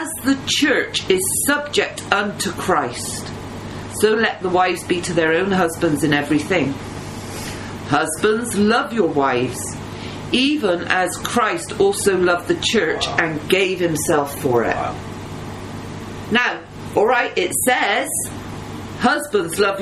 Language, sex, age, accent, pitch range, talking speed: English, female, 40-59, British, 140-235 Hz, 125 wpm